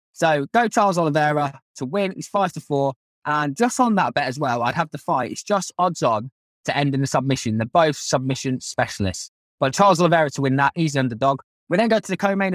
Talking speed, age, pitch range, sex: 225 wpm, 20-39, 130-180 Hz, male